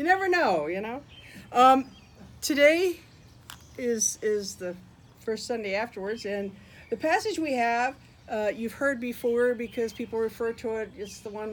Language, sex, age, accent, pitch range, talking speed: English, female, 50-69, American, 205-270 Hz, 155 wpm